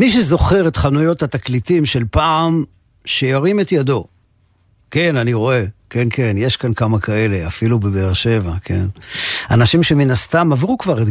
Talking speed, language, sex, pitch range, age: 155 wpm, Hebrew, male, 105-140 Hz, 50-69